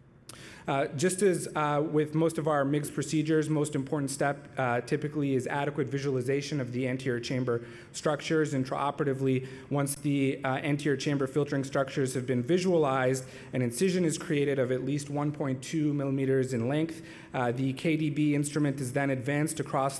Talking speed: 160 wpm